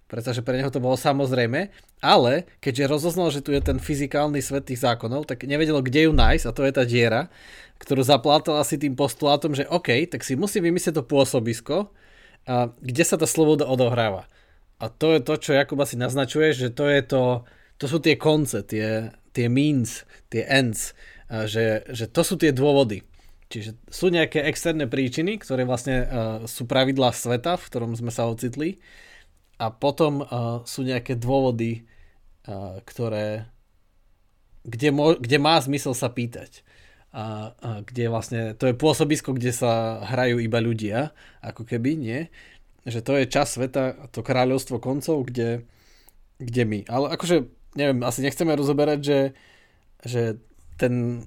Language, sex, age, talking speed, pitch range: Slovak, male, 20-39, 160 wpm, 115-145 Hz